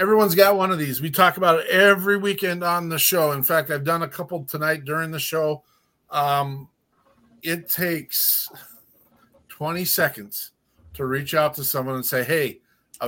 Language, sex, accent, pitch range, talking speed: English, male, American, 140-180 Hz, 175 wpm